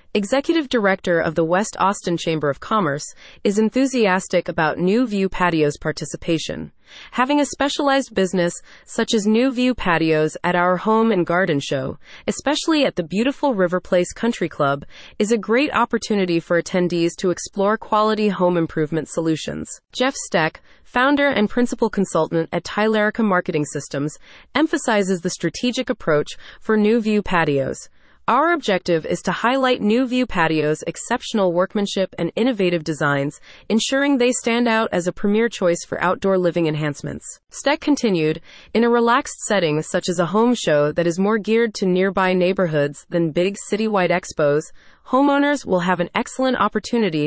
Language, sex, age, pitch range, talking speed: English, female, 30-49, 170-235 Hz, 155 wpm